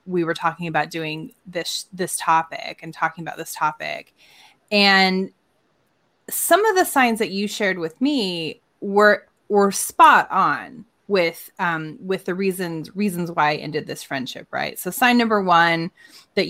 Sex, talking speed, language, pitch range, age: female, 160 wpm, English, 160-205 Hz, 20-39